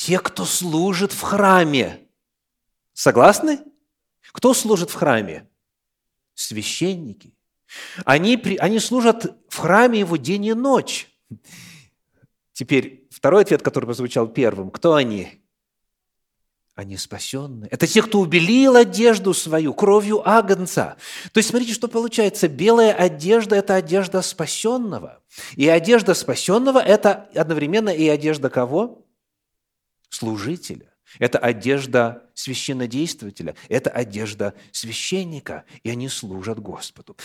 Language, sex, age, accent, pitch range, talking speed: Russian, male, 30-49, native, 130-205 Hz, 110 wpm